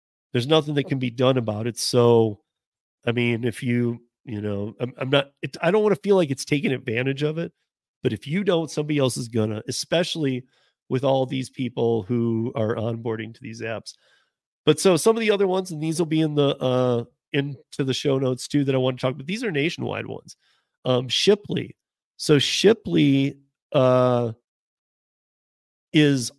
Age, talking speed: 40-59, 195 wpm